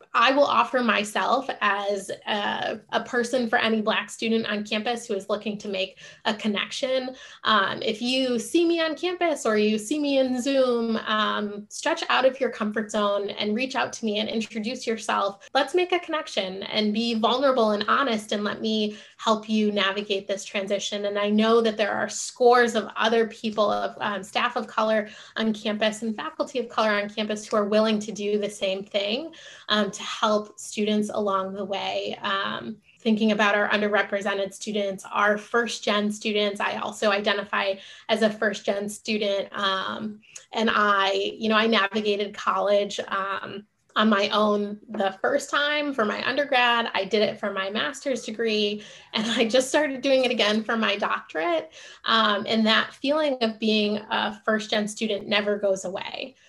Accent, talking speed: American, 180 wpm